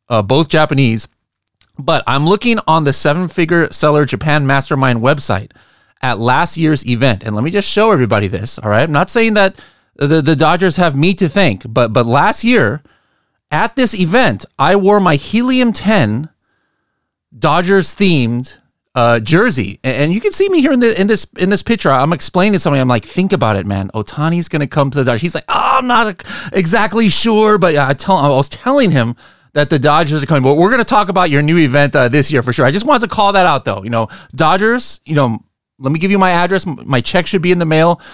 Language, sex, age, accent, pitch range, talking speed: English, male, 30-49, American, 130-185 Hz, 230 wpm